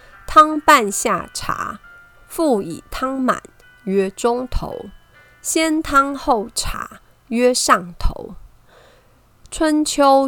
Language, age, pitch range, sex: Chinese, 30-49, 195-265 Hz, female